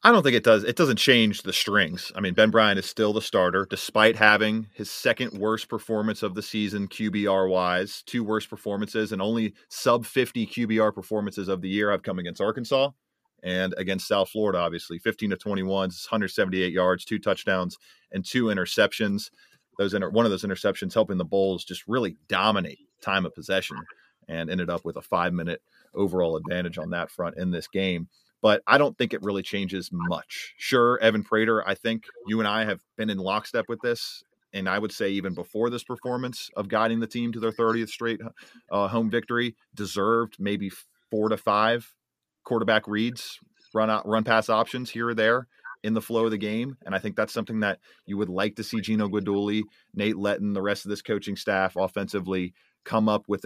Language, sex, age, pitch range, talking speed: English, male, 40-59, 95-110 Hz, 195 wpm